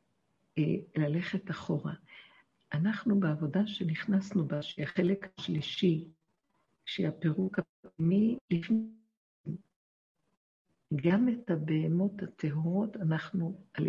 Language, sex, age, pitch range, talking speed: Hebrew, female, 60-79, 160-190 Hz, 70 wpm